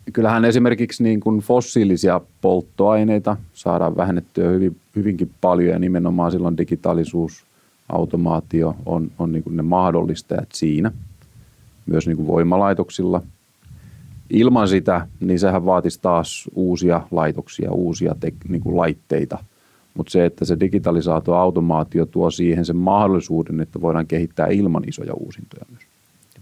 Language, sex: Finnish, male